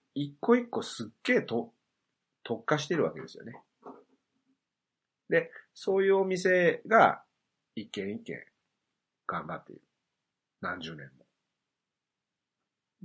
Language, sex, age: Japanese, male, 30-49